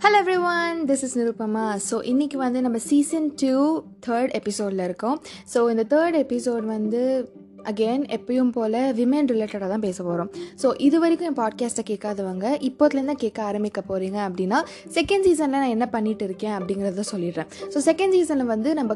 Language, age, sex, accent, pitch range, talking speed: Tamil, 20-39, female, native, 210-280 Hz, 175 wpm